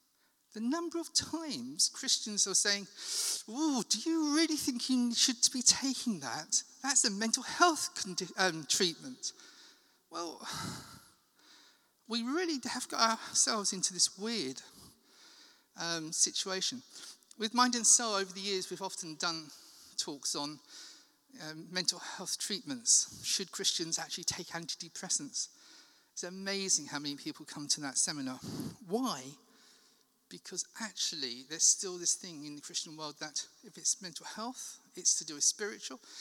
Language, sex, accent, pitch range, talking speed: English, male, British, 165-260 Hz, 140 wpm